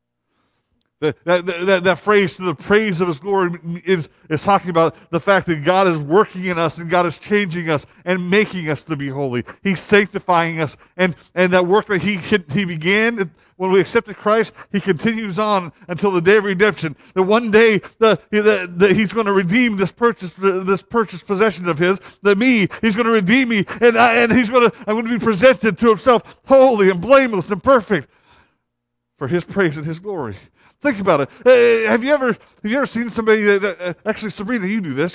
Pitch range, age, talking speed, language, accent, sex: 180-225 Hz, 50-69, 210 wpm, English, American, male